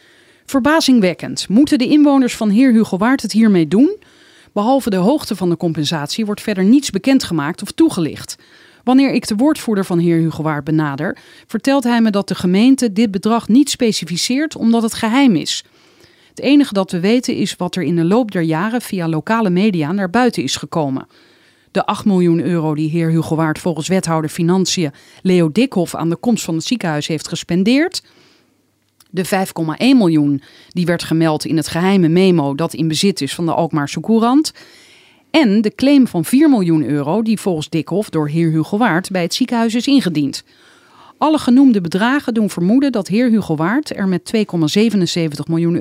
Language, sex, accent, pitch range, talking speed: Dutch, female, Dutch, 165-245 Hz, 180 wpm